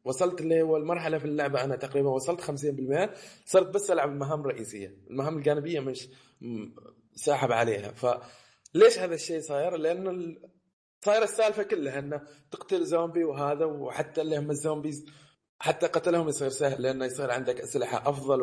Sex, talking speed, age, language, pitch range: male, 145 wpm, 20-39, Arabic, 130-170 Hz